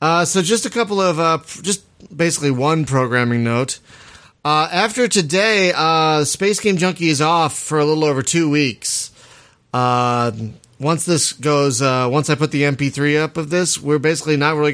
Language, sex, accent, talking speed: English, male, American, 180 wpm